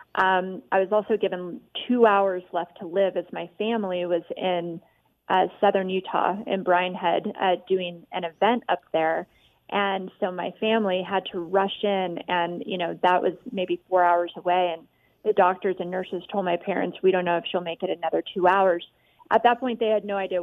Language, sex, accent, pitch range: English, female, American, 175-205 Hz